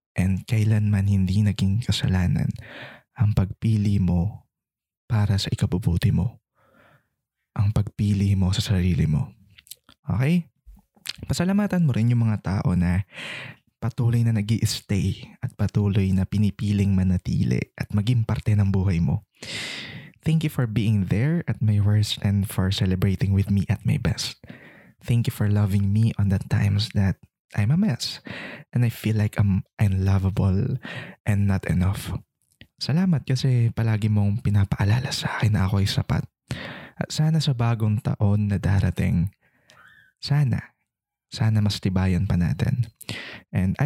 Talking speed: 140 wpm